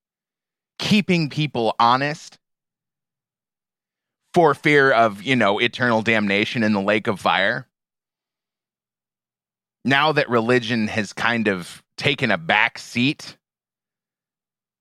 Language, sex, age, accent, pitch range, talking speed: English, male, 30-49, American, 105-140 Hz, 100 wpm